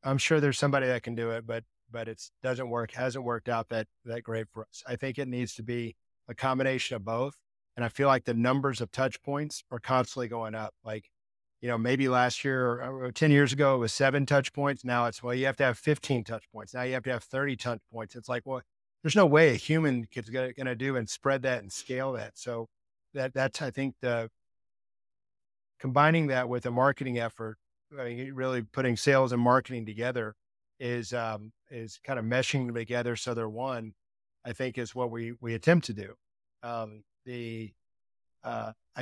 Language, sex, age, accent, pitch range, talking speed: English, male, 40-59, American, 115-135 Hz, 210 wpm